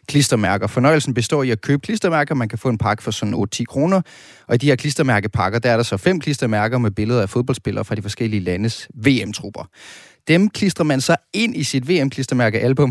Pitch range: 115-140 Hz